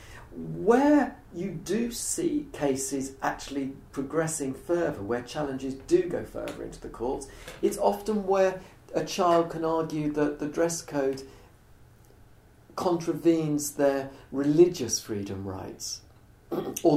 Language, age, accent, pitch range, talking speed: English, 50-69, British, 115-145 Hz, 115 wpm